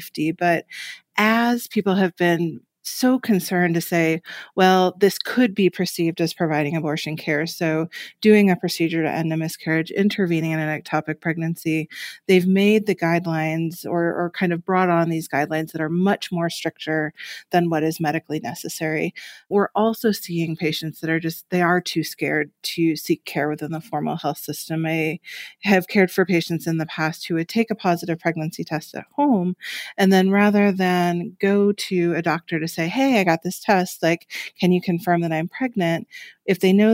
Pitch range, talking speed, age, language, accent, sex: 160-190 Hz, 185 wpm, 30-49, English, American, female